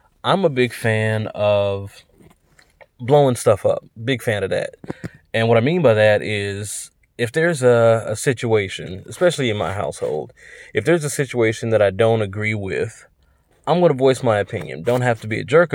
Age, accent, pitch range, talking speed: 20-39, American, 110-135 Hz, 185 wpm